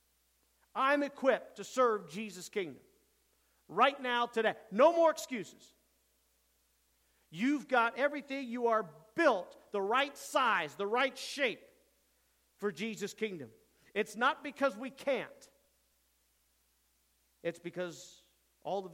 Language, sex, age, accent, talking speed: English, male, 50-69, American, 115 wpm